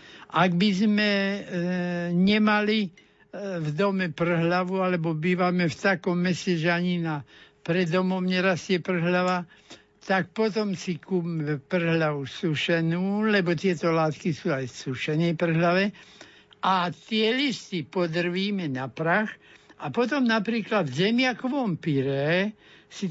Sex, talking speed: male, 120 wpm